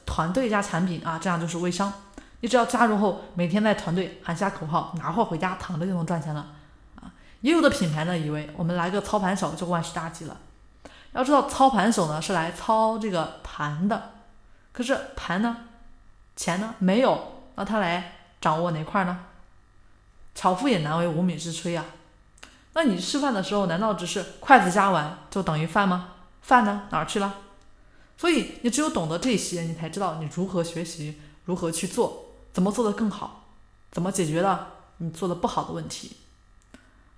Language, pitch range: Chinese, 165-210 Hz